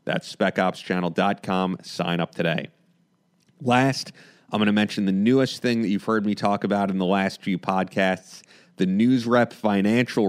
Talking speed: 155 wpm